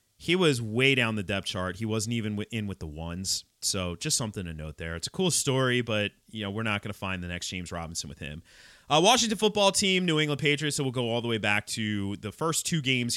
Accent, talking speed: American, 260 wpm